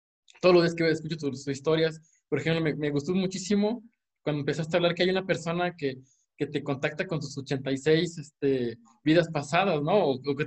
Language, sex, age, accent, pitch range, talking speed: Spanish, male, 20-39, Mexican, 145-180 Hz, 200 wpm